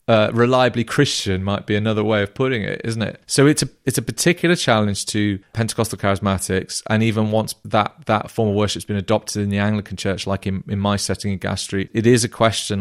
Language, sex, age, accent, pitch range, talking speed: English, male, 30-49, British, 105-140 Hz, 225 wpm